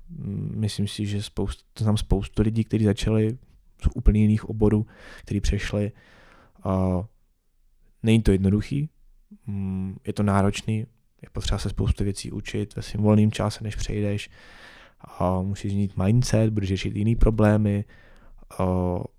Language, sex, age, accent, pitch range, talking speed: Czech, male, 20-39, native, 100-110 Hz, 140 wpm